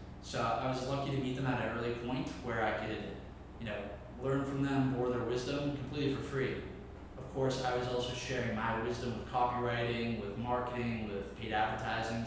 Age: 20-39